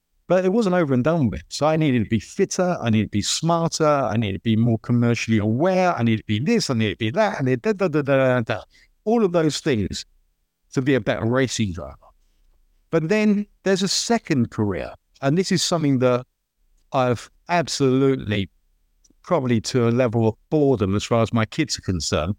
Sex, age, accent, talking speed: male, 50-69, British, 195 wpm